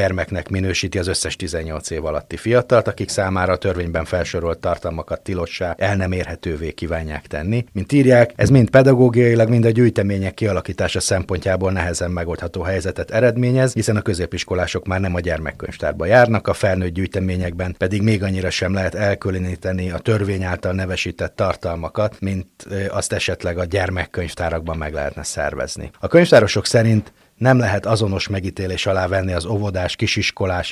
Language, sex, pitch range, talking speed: Hungarian, male, 90-105 Hz, 150 wpm